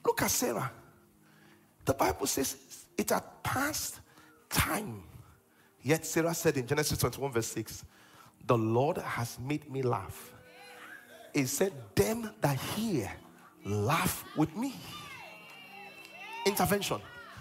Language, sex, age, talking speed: English, male, 40-59, 115 wpm